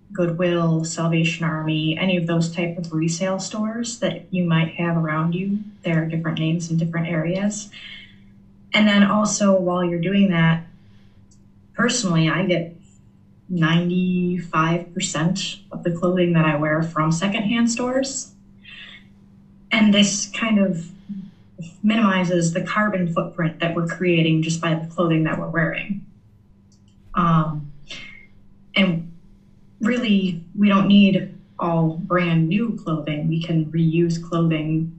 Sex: female